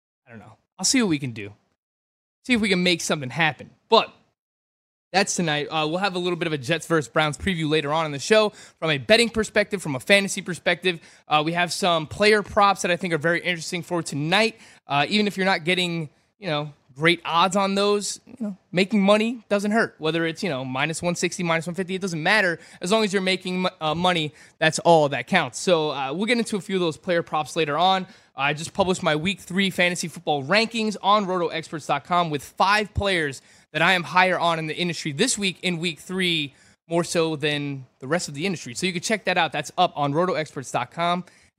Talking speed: 230 wpm